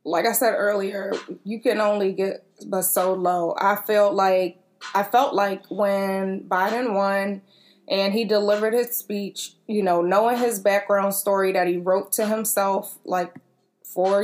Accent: American